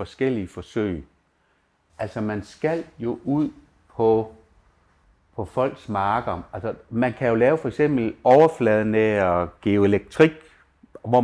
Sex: male